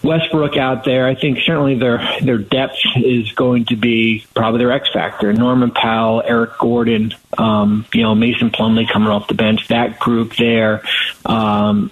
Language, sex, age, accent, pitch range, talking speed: English, male, 40-59, American, 110-130 Hz, 165 wpm